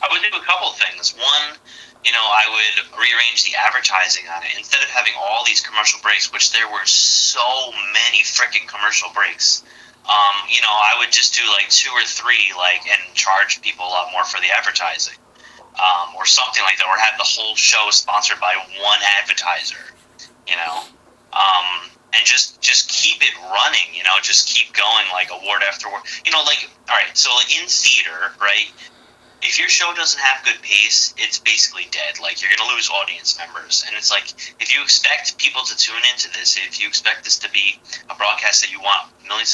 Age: 30-49